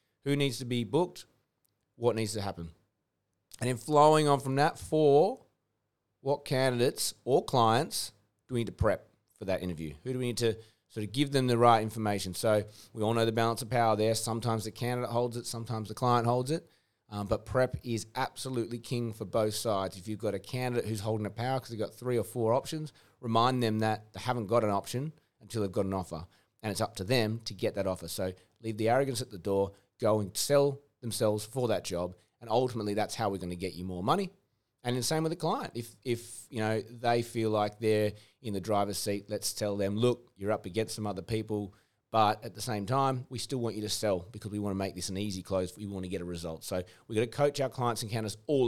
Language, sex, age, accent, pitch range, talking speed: English, male, 30-49, Australian, 105-125 Hz, 240 wpm